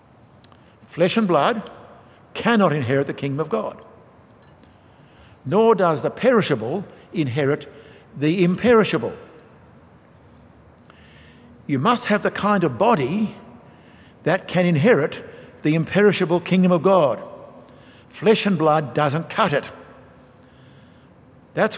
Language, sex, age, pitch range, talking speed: English, male, 60-79, 115-165 Hz, 105 wpm